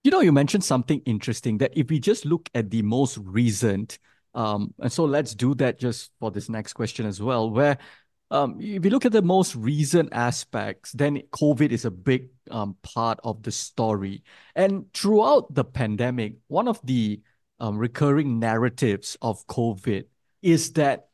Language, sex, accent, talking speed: English, male, Malaysian, 175 wpm